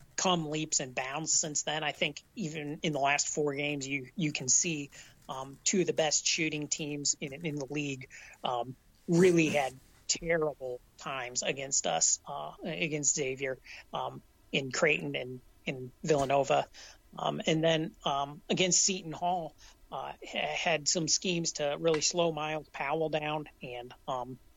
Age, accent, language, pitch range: 30-49, American, English, 140-165 Hz